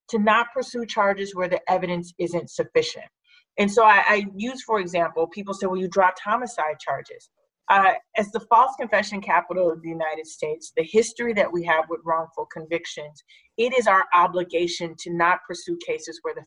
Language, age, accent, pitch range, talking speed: English, 30-49, American, 175-230 Hz, 185 wpm